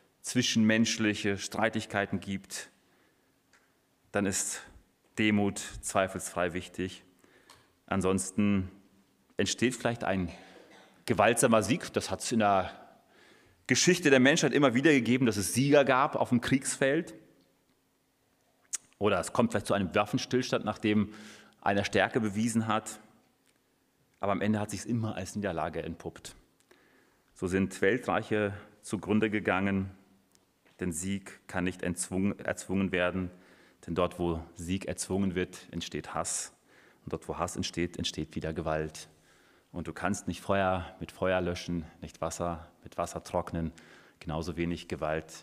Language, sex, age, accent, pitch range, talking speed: German, male, 30-49, German, 90-110 Hz, 130 wpm